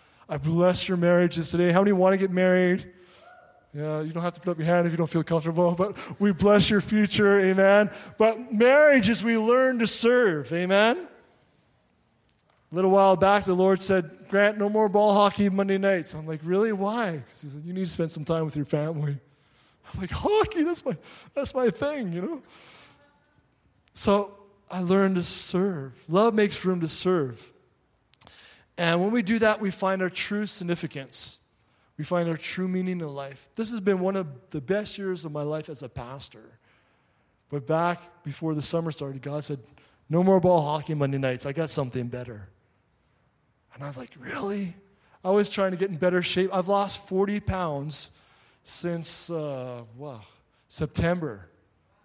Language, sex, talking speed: English, male, 180 wpm